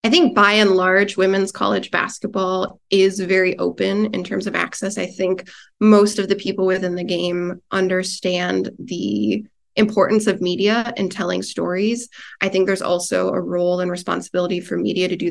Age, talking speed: 20-39, 175 wpm